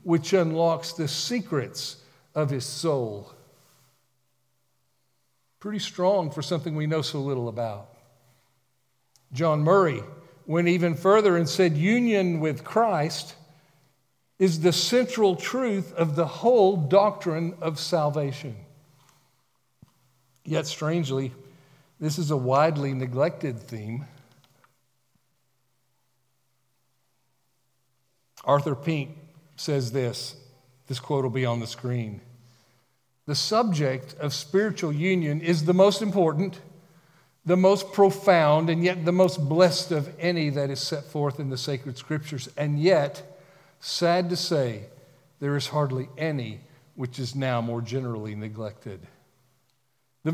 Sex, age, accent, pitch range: male, 50-69, American, 130-170 Hz